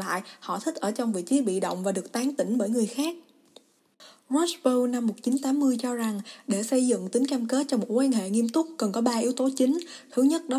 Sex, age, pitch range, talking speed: female, 20-39, 215-260 Hz, 240 wpm